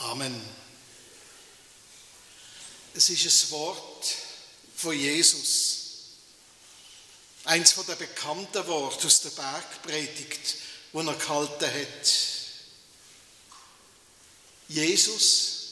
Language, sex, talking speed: German, male, 75 wpm